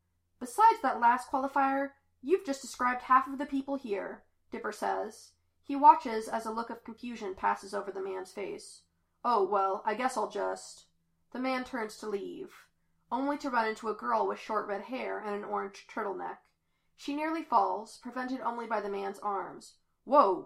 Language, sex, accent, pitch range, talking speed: English, female, American, 200-275 Hz, 180 wpm